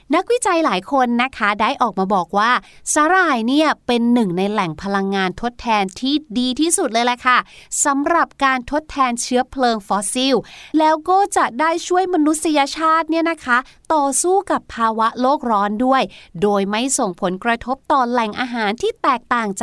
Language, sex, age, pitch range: Thai, female, 30-49, 220-300 Hz